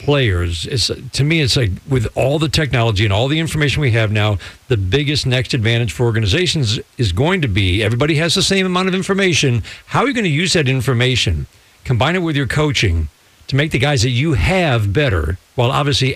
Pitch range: 105-145 Hz